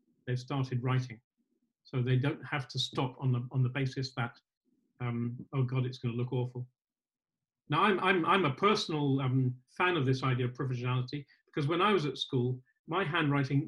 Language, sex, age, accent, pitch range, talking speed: English, male, 40-59, British, 125-145 Hz, 195 wpm